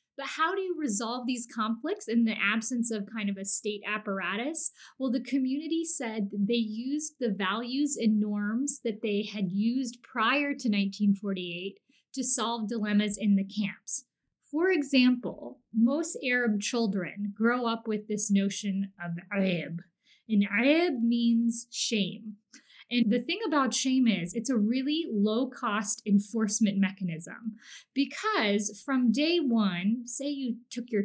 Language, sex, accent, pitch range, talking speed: English, female, American, 210-270 Hz, 145 wpm